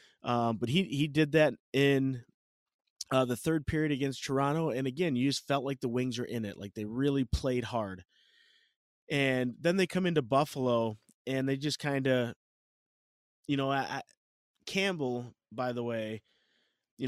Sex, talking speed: male, 170 wpm